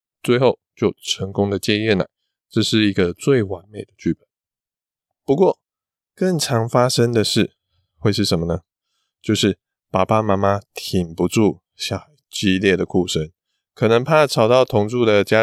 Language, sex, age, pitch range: Chinese, male, 20-39, 95-125 Hz